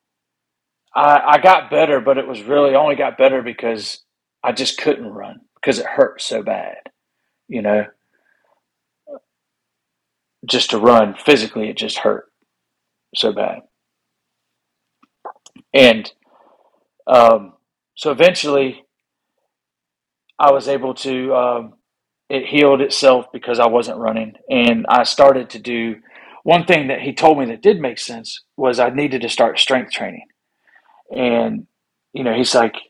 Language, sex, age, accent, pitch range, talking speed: English, male, 40-59, American, 115-135 Hz, 135 wpm